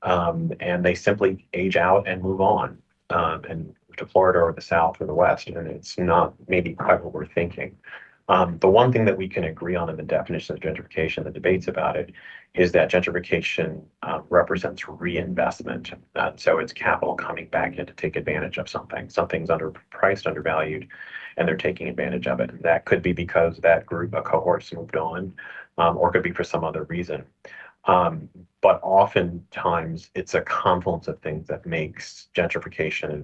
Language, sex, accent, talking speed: English, male, American, 185 wpm